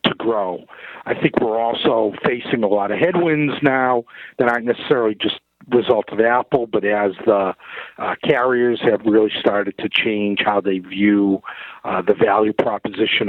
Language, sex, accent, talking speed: English, male, American, 160 wpm